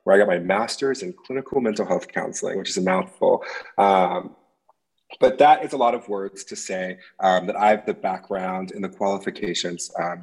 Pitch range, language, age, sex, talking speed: 90-110 Hz, English, 20-39, male, 200 wpm